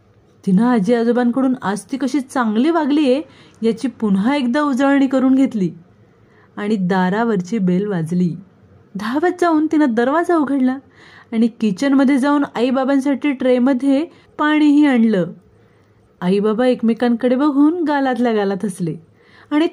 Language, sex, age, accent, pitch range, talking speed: Marathi, female, 30-49, native, 215-290 Hz, 50 wpm